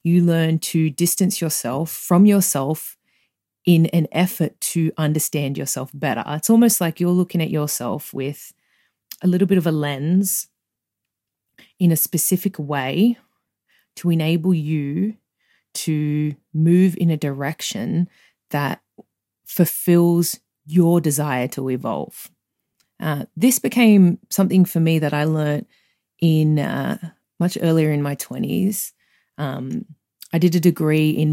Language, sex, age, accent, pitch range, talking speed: English, female, 30-49, Australian, 150-180 Hz, 130 wpm